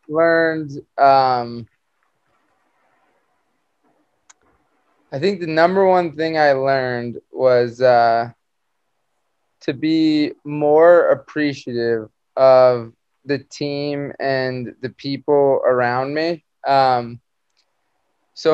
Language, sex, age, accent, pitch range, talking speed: English, male, 20-39, American, 130-155 Hz, 85 wpm